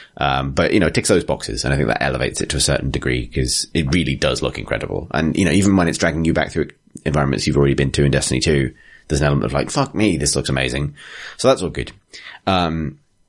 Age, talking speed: 30-49, 260 wpm